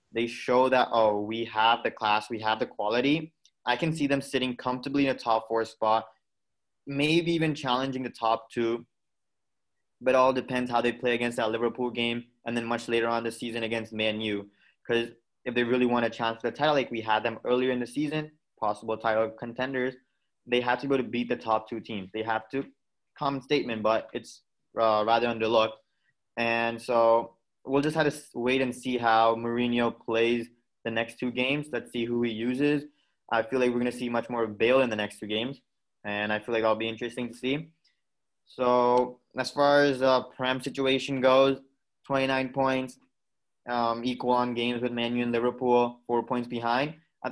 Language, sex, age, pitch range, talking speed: English, male, 20-39, 115-130 Hz, 205 wpm